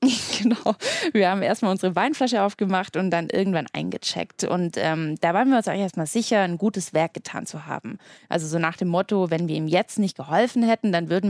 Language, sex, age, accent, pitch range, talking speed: German, female, 20-39, German, 180-220 Hz, 215 wpm